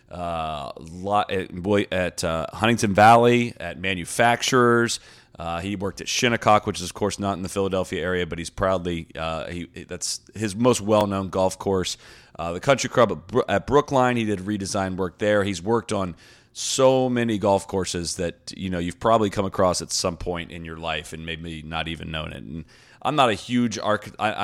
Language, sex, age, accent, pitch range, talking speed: English, male, 30-49, American, 90-110 Hz, 185 wpm